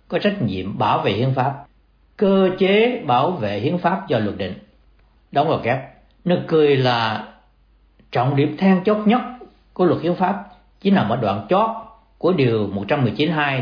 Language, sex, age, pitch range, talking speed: Vietnamese, male, 60-79, 110-180 Hz, 170 wpm